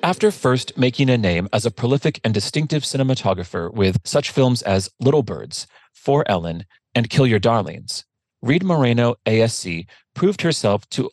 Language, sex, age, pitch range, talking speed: English, male, 30-49, 95-135 Hz, 155 wpm